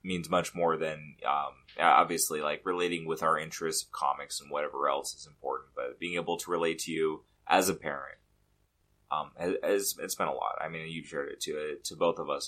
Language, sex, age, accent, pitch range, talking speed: English, male, 30-49, American, 80-100 Hz, 215 wpm